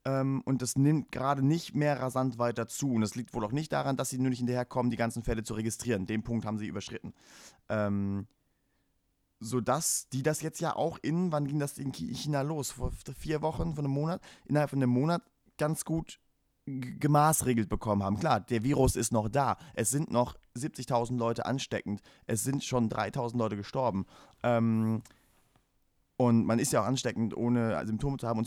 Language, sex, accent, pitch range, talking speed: German, male, German, 110-140 Hz, 195 wpm